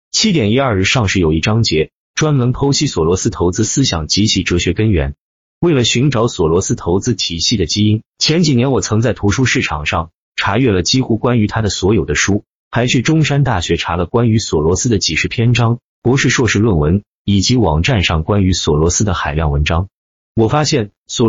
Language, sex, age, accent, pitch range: Chinese, male, 30-49, native, 90-125 Hz